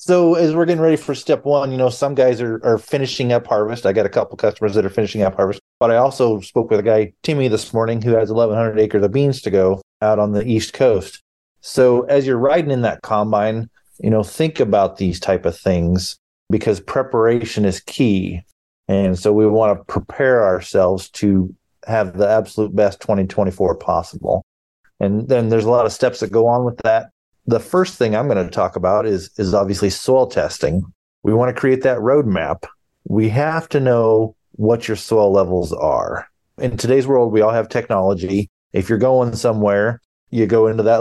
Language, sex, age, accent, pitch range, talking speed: English, male, 30-49, American, 100-125 Hz, 200 wpm